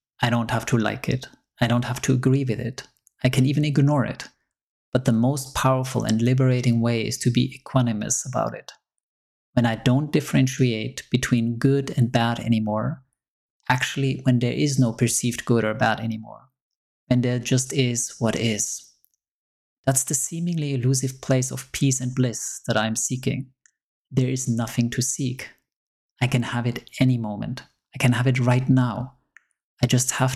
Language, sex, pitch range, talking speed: English, male, 120-135 Hz, 175 wpm